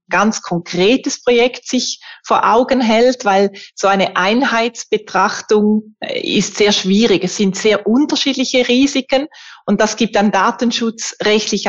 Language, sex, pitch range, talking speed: German, female, 190-230 Hz, 125 wpm